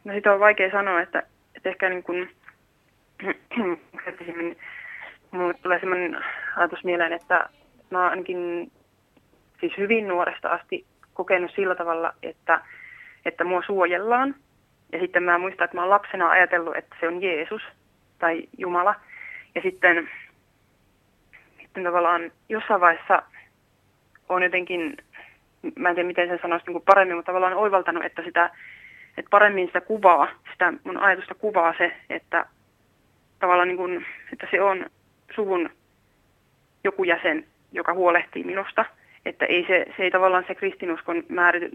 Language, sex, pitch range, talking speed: Finnish, female, 175-200 Hz, 135 wpm